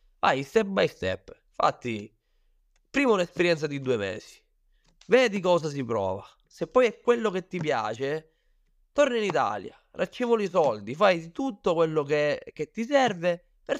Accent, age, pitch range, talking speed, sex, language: native, 20-39, 120-190 Hz, 150 wpm, male, Italian